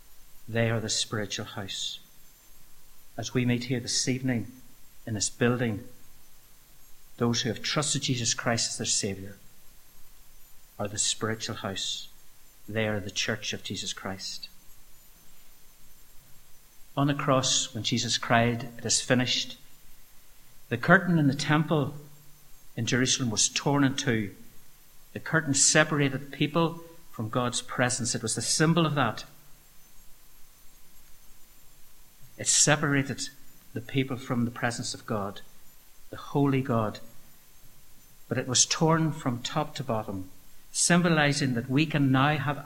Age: 60-79